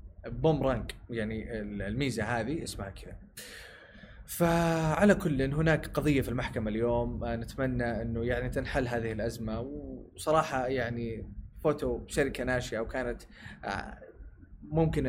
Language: Arabic